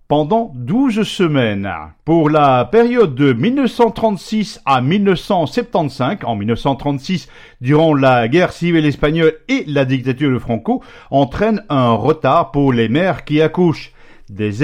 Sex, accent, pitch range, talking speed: male, French, 135-200 Hz, 125 wpm